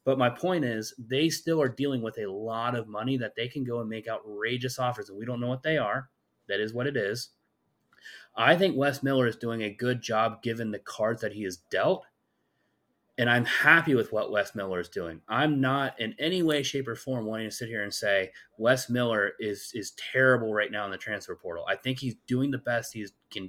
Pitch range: 105-125 Hz